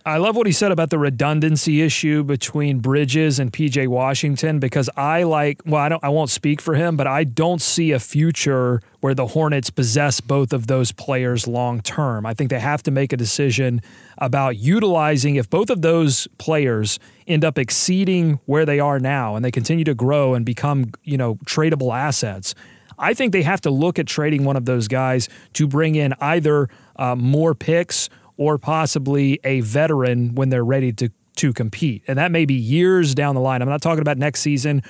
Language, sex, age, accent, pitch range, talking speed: English, male, 30-49, American, 130-155 Hz, 200 wpm